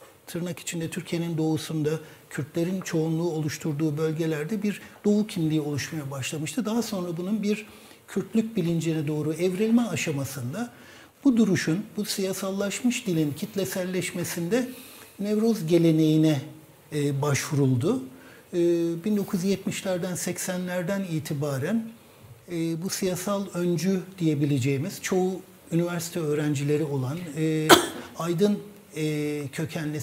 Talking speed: 95 wpm